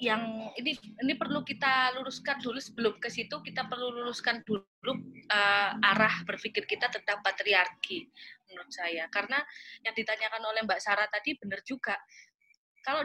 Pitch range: 200-250 Hz